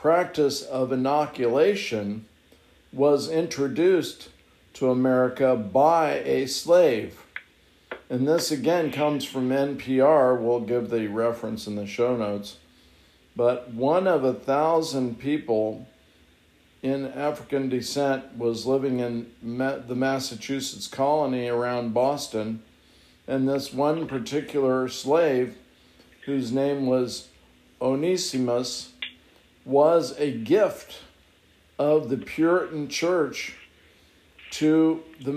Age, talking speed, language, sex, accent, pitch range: 50-69, 100 wpm, English, male, American, 120-145 Hz